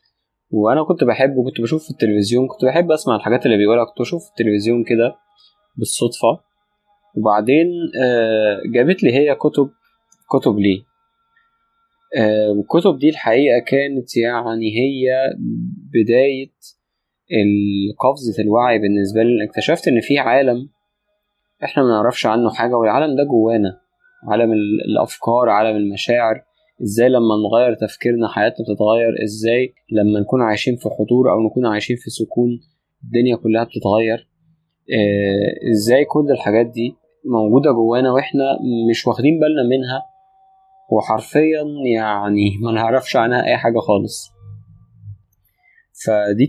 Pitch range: 110-140 Hz